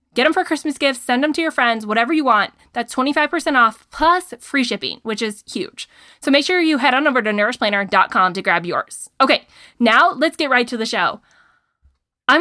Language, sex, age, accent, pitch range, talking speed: English, female, 20-39, American, 220-295 Hz, 210 wpm